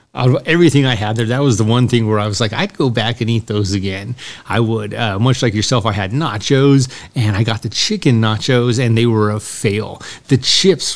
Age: 40-59